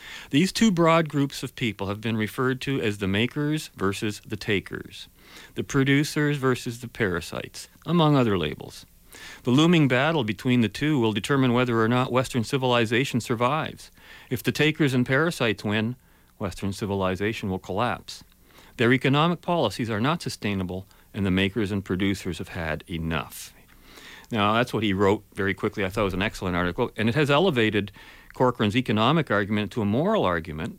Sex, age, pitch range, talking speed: male, 40-59, 105-140 Hz, 170 wpm